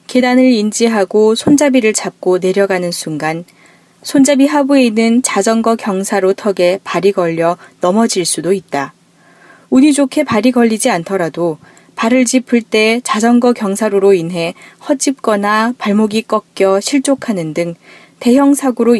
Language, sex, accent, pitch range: Korean, female, native, 180-235 Hz